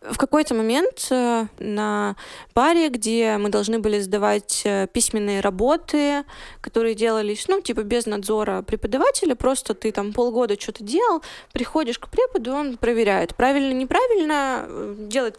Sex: female